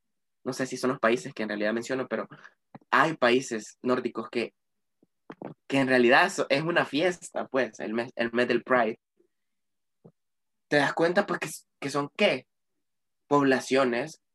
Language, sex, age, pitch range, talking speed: Spanish, male, 20-39, 125-155 Hz, 155 wpm